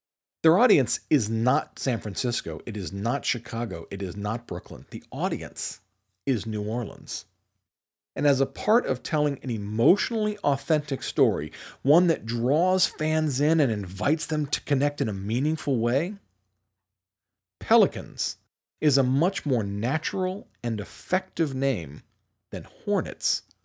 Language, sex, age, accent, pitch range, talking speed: English, male, 40-59, American, 105-150 Hz, 135 wpm